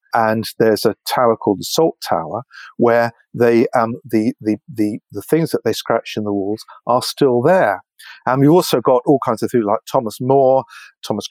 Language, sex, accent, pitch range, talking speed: English, male, British, 110-150 Hz, 195 wpm